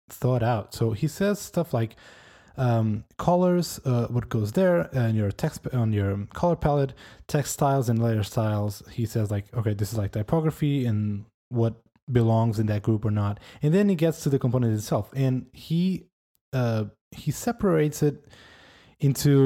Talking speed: 175 wpm